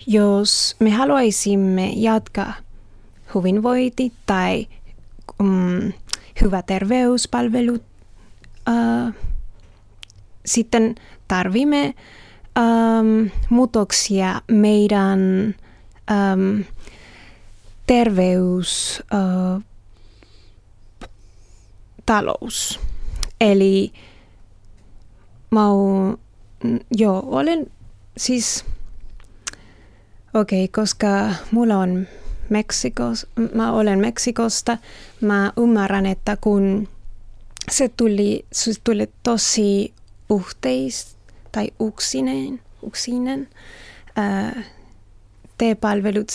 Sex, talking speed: female, 50 wpm